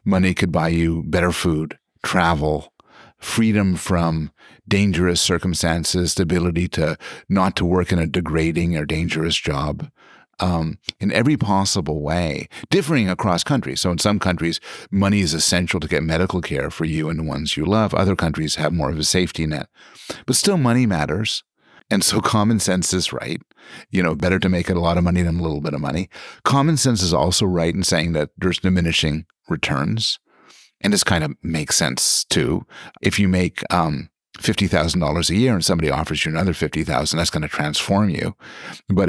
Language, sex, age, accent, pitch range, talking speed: English, male, 50-69, American, 80-100 Hz, 185 wpm